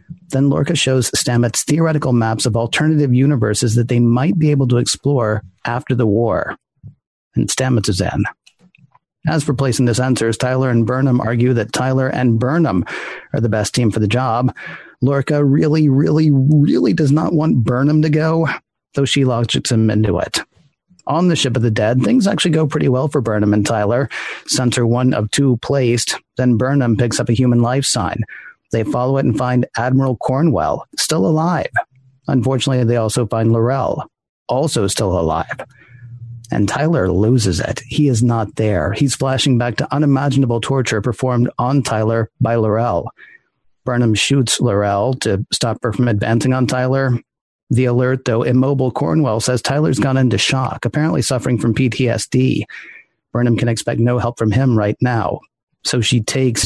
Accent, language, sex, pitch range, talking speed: American, English, male, 115-140 Hz, 170 wpm